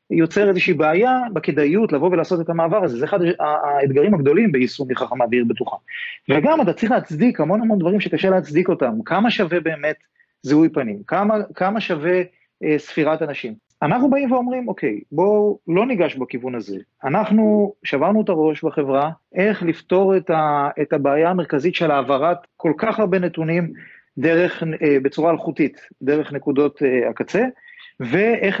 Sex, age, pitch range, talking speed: male, 30-49, 150-210 Hz, 155 wpm